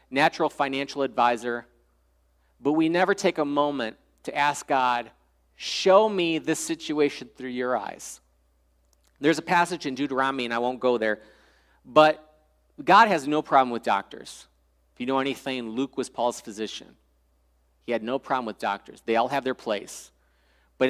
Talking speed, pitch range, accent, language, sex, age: 160 wpm, 95-150 Hz, American, English, male, 40-59